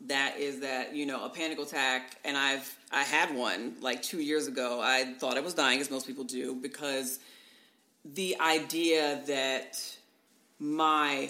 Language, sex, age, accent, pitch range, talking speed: English, female, 40-59, American, 135-165 Hz, 165 wpm